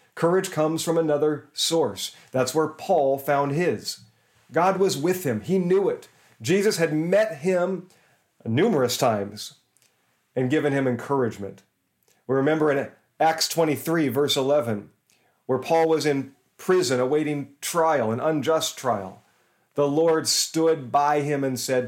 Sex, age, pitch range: male, 40-59, 130-165 Hz